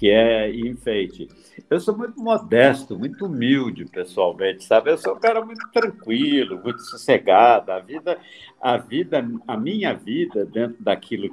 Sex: male